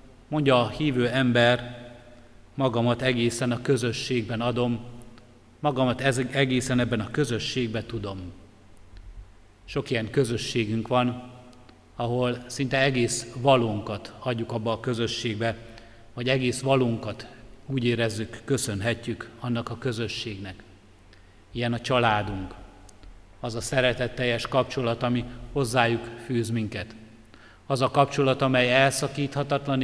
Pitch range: 110-130 Hz